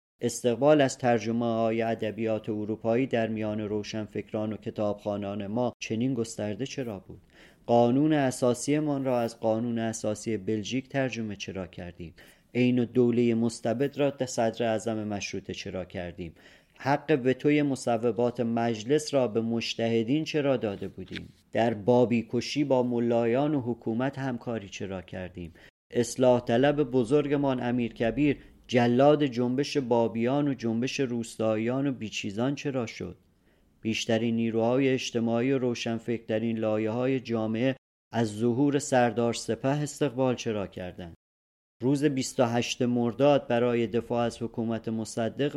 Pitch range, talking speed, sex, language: 110-130 Hz, 120 wpm, male, Persian